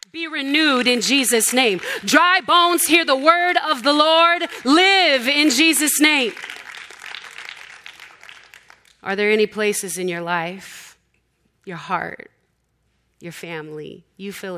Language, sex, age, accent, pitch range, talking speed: English, female, 30-49, American, 160-200 Hz, 125 wpm